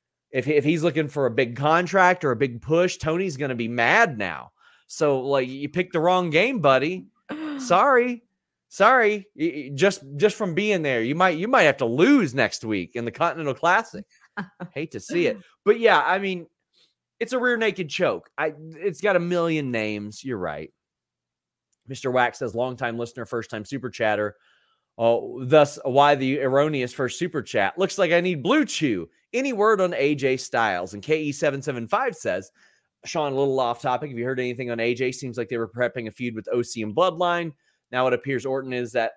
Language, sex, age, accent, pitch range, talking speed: English, male, 30-49, American, 120-175 Hz, 190 wpm